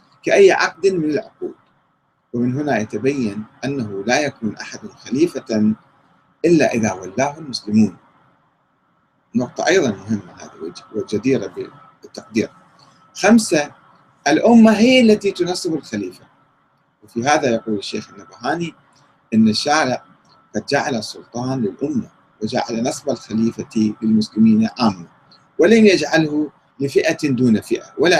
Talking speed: 105 wpm